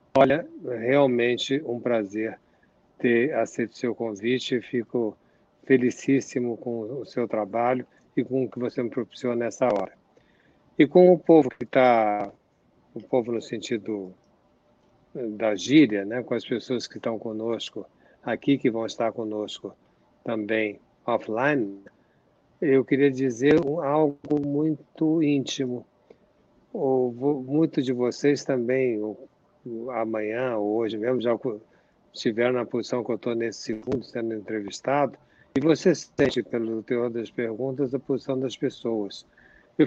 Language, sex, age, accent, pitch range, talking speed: Portuguese, male, 60-79, Brazilian, 115-145 Hz, 130 wpm